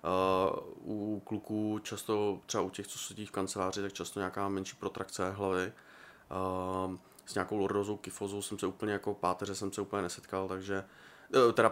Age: 20-39